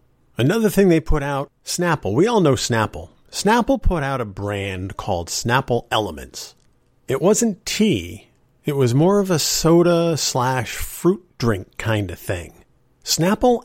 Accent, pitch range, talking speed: American, 110-155 Hz, 150 wpm